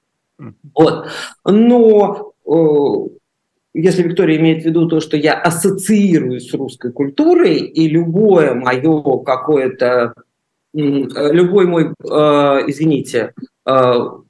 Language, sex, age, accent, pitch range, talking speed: Russian, male, 50-69, native, 155-200 Hz, 85 wpm